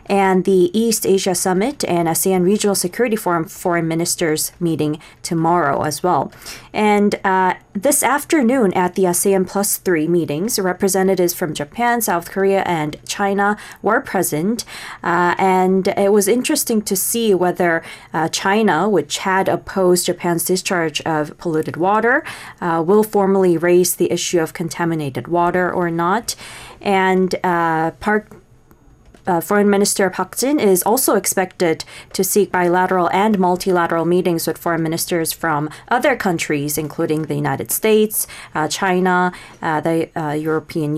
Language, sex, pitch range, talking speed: English, female, 165-200 Hz, 140 wpm